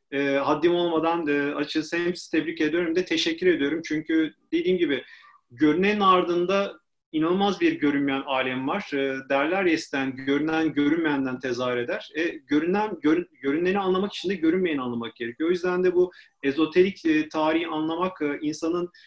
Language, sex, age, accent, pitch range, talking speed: Turkish, male, 40-59, native, 140-185 Hz, 145 wpm